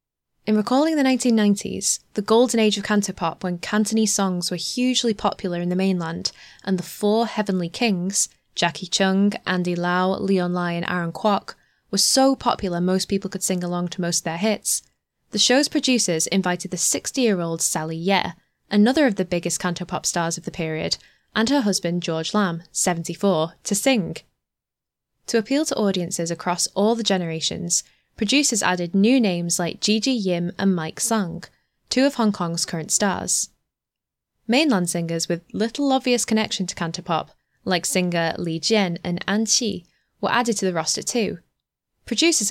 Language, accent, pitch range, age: English, British, 175-220 Hz, 10-29